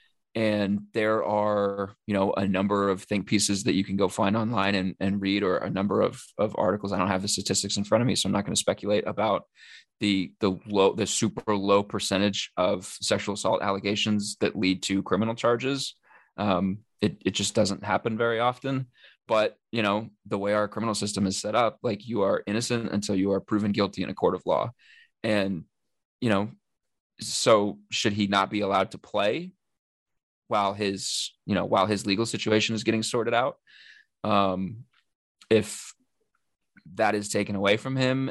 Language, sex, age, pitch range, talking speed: English, male, 20-39, 100-110 Hz, 190 wpm